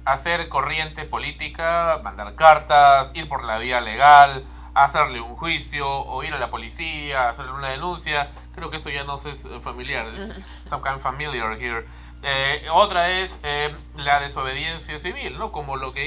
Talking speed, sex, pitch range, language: 155 wpm, male, 125-165 Hz, Spanish